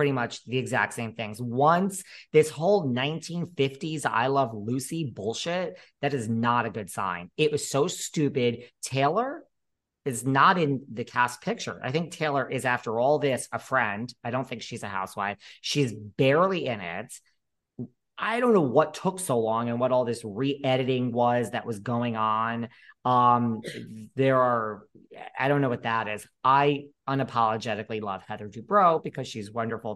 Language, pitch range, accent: English, 115-145 Hz, American